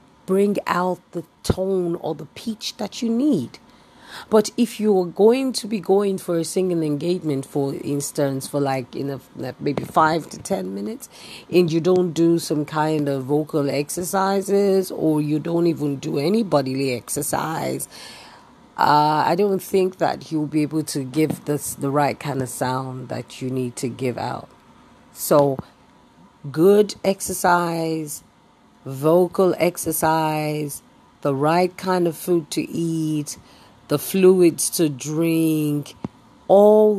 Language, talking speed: English, 145 wpm